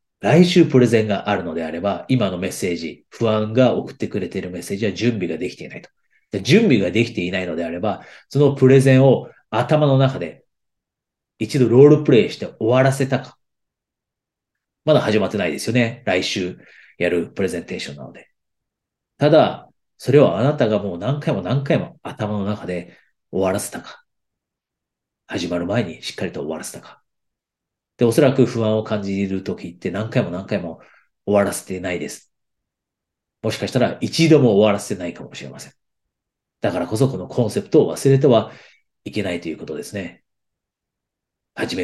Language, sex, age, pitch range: Japanese, male, 40-59, 95-135 Hz